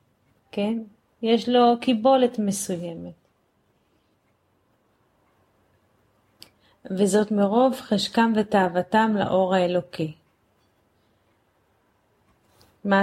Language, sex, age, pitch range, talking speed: Hebrew, female, 30-49, 165-210 Hz, 55 wpm